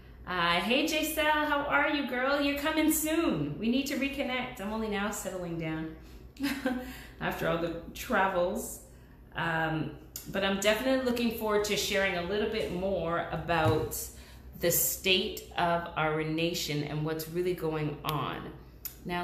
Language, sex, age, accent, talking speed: English, female, 30-49, American, 145 wpm